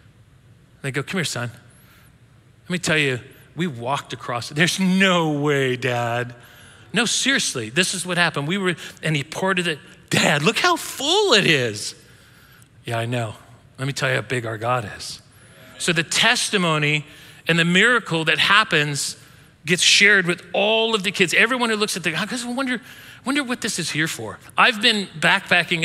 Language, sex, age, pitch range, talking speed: English, male, 40-59, 130-195 Hz, 185 wpm